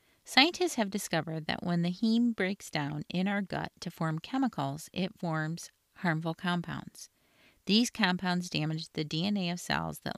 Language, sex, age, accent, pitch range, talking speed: English, female, 40-59, American, 160-200 Hz, 160 wpm